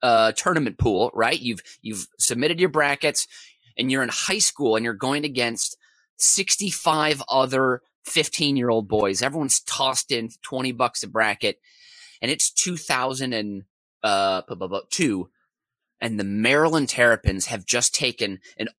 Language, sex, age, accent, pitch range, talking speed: English, male, 30-49, American, 125-190 Hz, 140 wpm